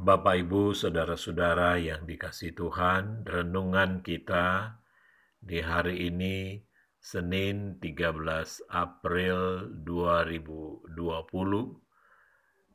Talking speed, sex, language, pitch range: 70 wpm, male, Indonesian, 85-95 Hz